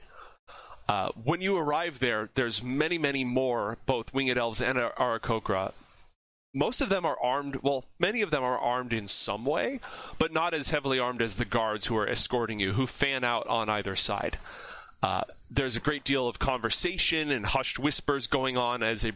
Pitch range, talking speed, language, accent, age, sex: 120-150 Hz, 190 wpm, English, American, 30-49, male